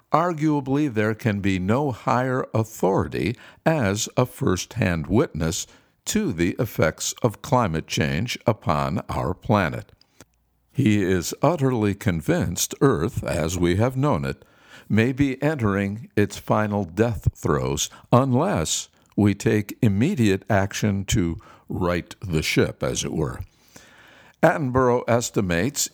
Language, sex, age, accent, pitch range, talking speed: English, male, 60-79, American, 95-135 Hz, 120 wpm